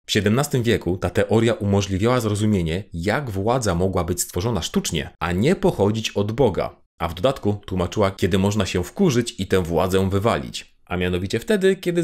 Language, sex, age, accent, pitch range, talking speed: Polish, male, 30-49, native, 90-120 Hz, 170 wpm